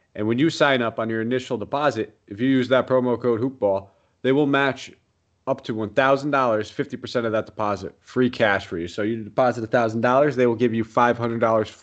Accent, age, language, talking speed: American, 30-49, English, 200 wpm